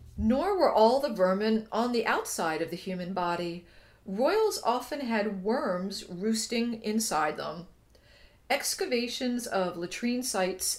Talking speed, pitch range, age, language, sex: 130 wpm, 185-240 Hz, 50-69, English, female